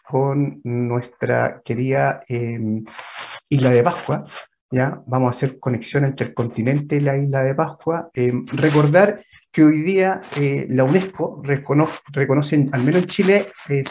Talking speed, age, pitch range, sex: 150 wpm, 30-49, 125-155 Hz, male